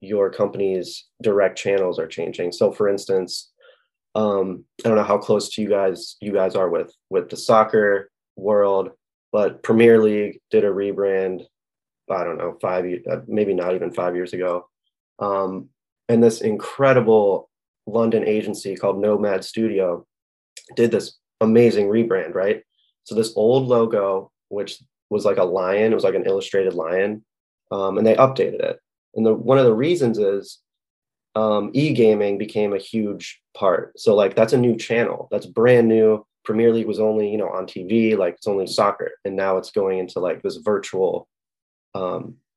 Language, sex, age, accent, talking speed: English, male, 20-39, American, 165 wpm